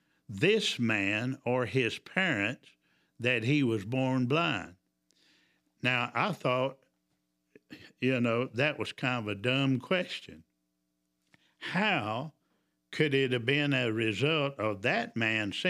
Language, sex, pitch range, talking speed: English, male, 110-150 Hz, 120 wpm